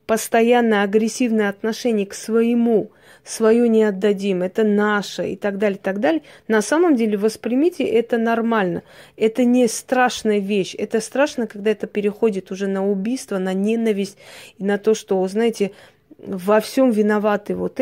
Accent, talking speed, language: native, 145 wpm, Russian